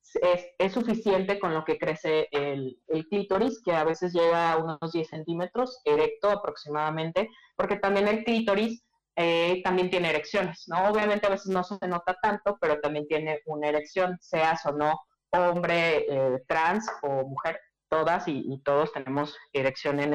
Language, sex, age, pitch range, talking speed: Spanish, female, 30-49, 155-200 Hz, 165 wpm